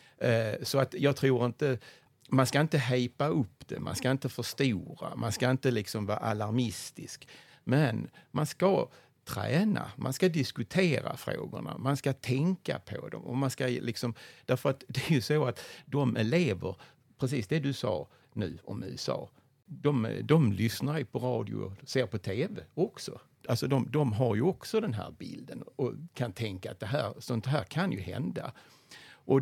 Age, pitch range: 60-79, 110-140 Hz